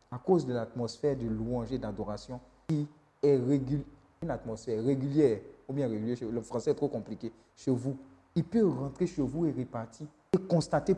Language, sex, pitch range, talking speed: French, male, 140-205 Hz, 180 wpm